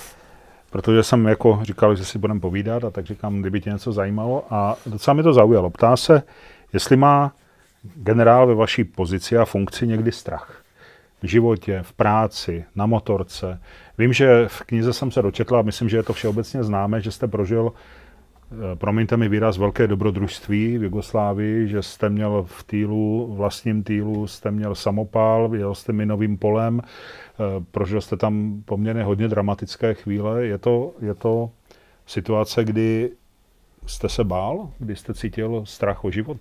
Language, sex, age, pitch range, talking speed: Czech, male, 40-59, 100-115 Hz, 165 wpm